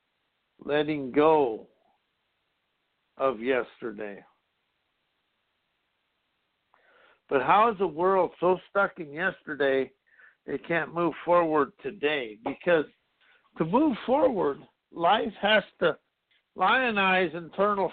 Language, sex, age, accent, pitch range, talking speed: English, male, 60-79, American, 155-200 Hz, 90 wpm